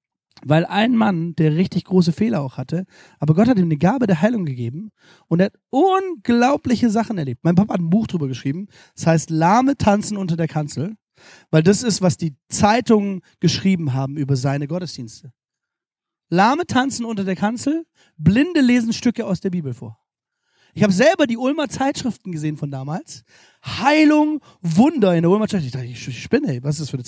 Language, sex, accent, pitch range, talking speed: German, male, German, 150-230 Hz, 190 wpm